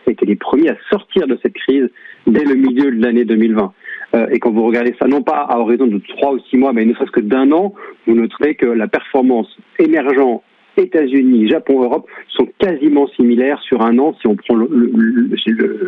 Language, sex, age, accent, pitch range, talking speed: French, male, 40-59, French, 115-145 Hz, 210 wpm